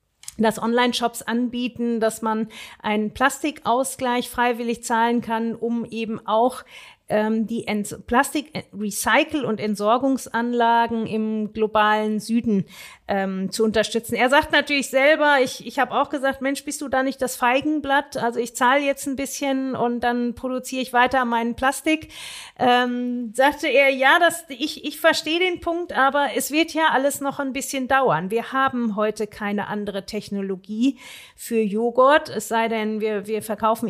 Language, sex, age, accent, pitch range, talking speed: German, female, 40-59, German, 220-270 Hz, 150 wpm